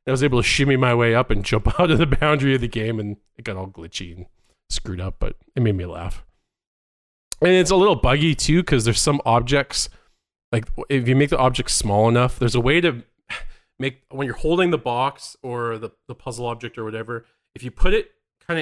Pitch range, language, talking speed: 105-140 Hz, English, 225 wpm